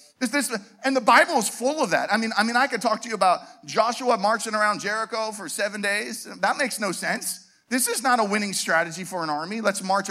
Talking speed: 245 wpm